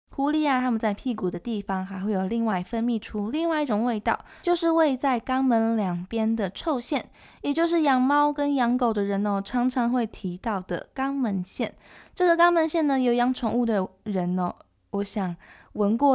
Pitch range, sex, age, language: 200-270 Hz, female, 20-39, Chinese